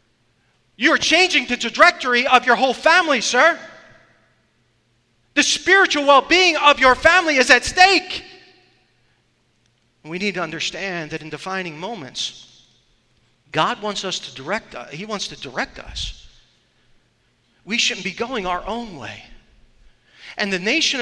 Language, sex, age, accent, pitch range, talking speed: English, male, 40-59, American, 175-255 Hz, 135 wpm